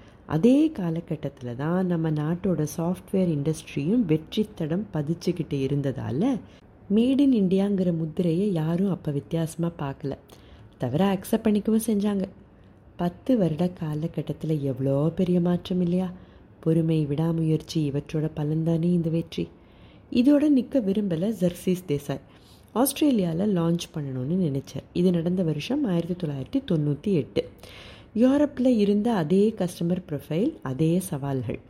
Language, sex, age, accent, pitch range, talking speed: Tamil, female, 30-49, native, 150-195 Hz, 105 wpm